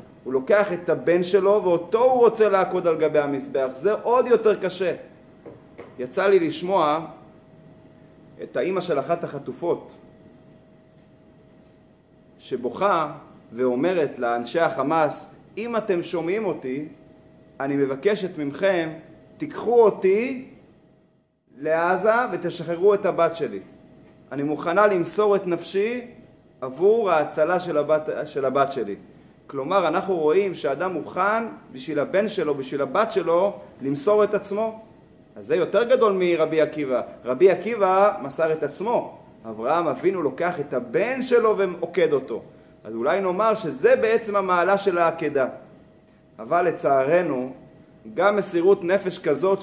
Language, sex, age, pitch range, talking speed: Hebrew, male, 30-49, 155-210 Hz, 120 wpm